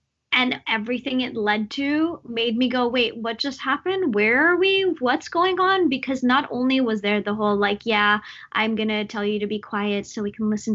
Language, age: English, 20-39